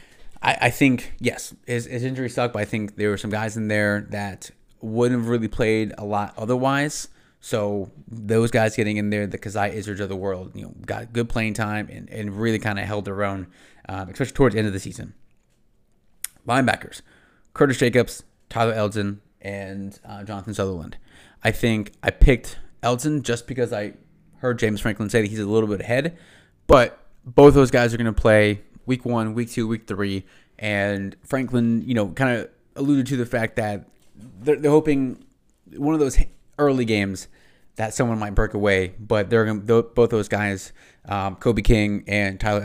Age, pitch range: 20-39, 100-120 Hz